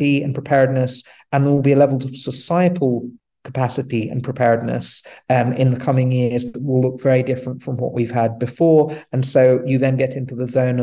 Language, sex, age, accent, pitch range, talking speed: English, male, 30-49, British, 120-135 Hz, 200 wpm